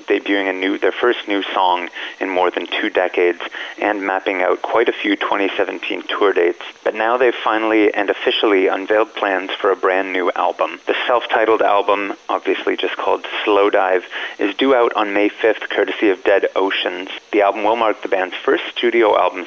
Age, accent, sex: 30-49, American, male